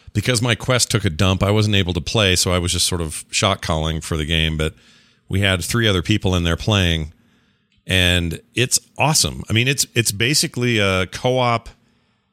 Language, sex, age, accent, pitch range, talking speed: English, male, 40-59, American, 90-115 Hz, 200 wpm